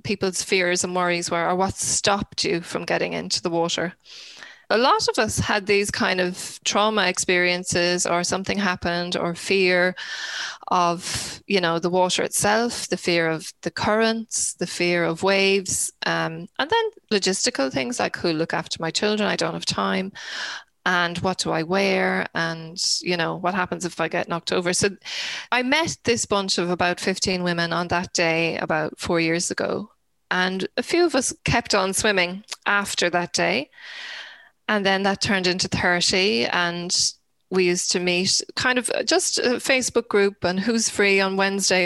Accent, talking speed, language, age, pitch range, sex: Irish, 175 wpm, English, 20-39, 175-205 Hz, female